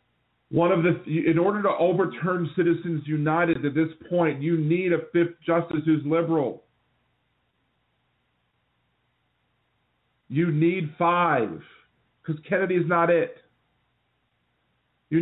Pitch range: 120-165 Hz